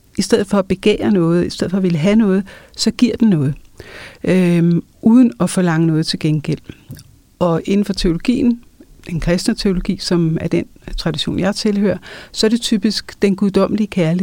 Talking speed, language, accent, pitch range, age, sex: 180 wpm, Danish, native, 180-215 Hz, 60-79, female